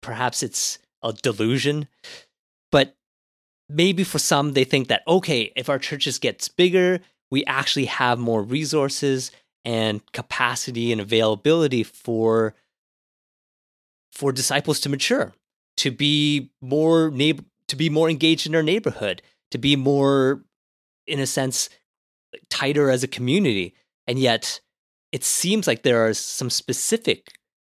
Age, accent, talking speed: 30-49, American, 135 wpm